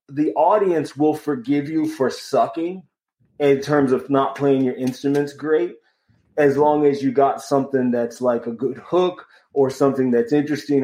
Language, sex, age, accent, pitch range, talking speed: English, male, 30-49, American, 125-150 Hz, 165 wpm